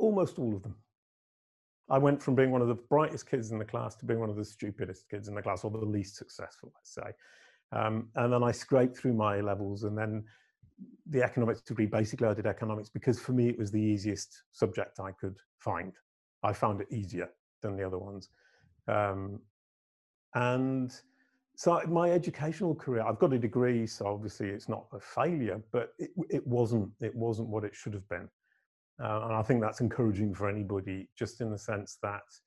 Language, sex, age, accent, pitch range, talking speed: English, male, 40-59, British, 105-125 Hz, 200 wpm